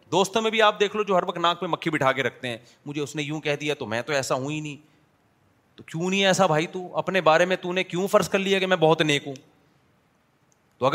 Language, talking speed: Urdu, 175 wpm